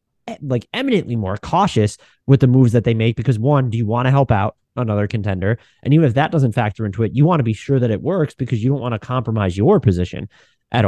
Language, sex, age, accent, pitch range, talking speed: English, male, 20-39, American, 110-140 Hz, 250 wpm